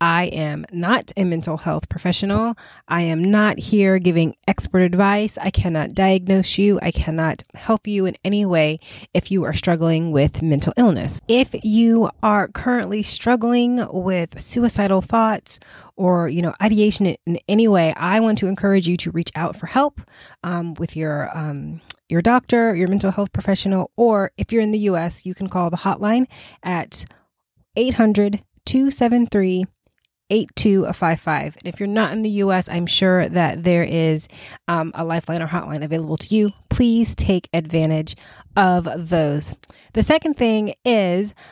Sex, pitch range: female, 165-210 Hz